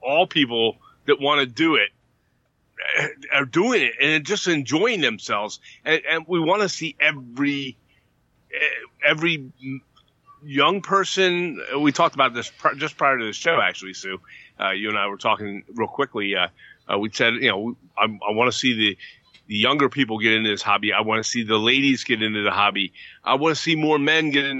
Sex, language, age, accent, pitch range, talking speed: male, English, 30-49, American, 110-155 Hz, 195 wpm